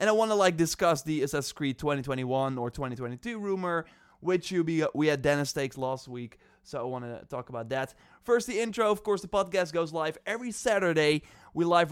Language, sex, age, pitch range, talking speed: English, male, 20-39, 135-180 Hz, 210 wpm